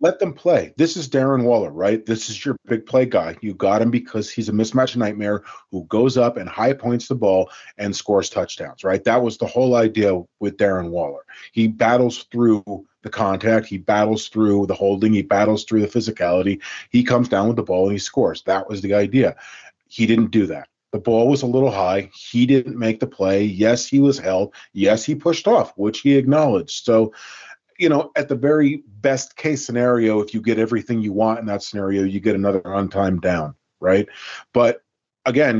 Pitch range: 105-125 Hz